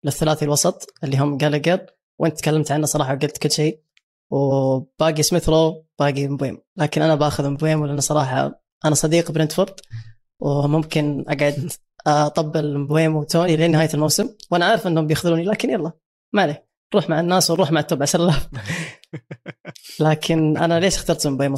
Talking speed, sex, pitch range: 145 wpm, female, 145-165 Hz